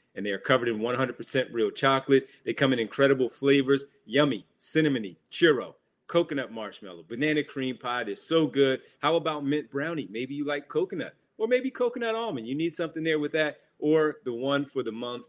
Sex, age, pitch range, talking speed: male, 30-49, 125-150 Hz, 190 wpm